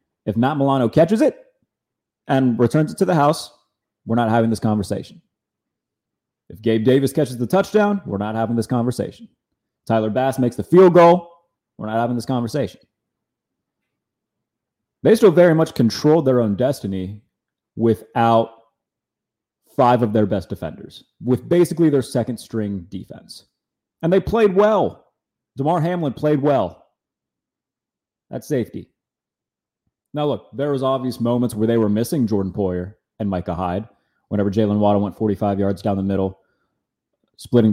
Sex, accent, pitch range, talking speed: male, American, 105-140 Hz, 150 wpm